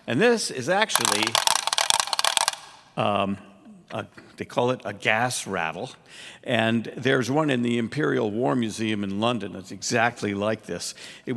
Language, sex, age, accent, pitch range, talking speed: English, male, 50-69, American, 105-125 Hz, 135 wpm